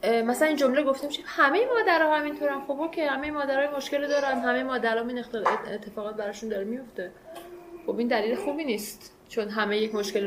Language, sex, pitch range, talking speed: Persian, female, 225-295 Hz, 170 wpm